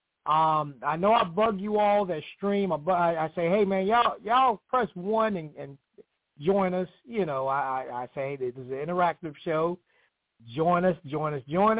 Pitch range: 130-195 Hz